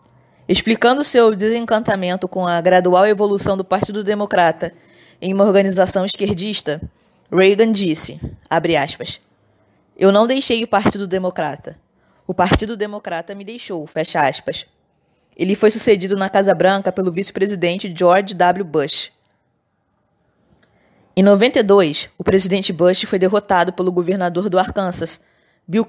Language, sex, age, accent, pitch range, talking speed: Portuguese, female, 20-39, Brazilian, 180-210 Hz, 125 wpm